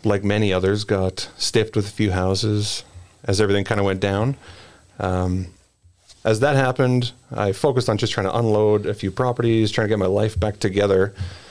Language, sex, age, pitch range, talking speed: English, male, 40-59, 95-115 Hz, 190 wpm